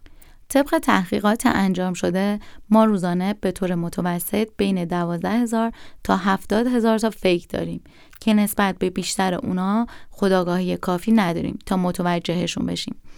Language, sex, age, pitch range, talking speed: Persian, female, 20-39, 185-235 Hz, 130 wpm